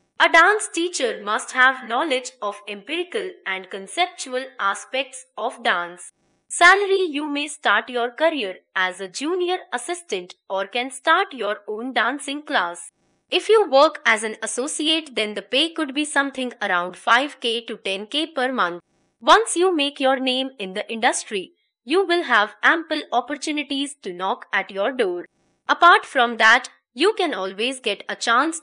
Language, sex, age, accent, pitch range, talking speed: English, female, 20-39, Indian, 210-305 Hz, 155 wpm